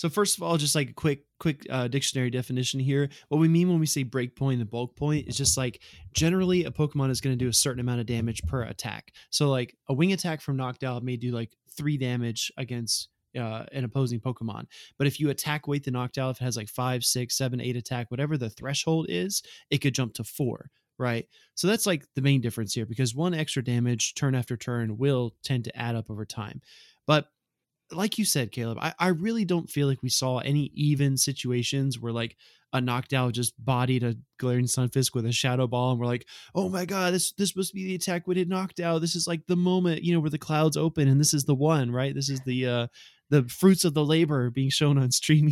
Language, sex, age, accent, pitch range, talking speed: English, male, 20-39, American, 120-155 Hz, 240 wpm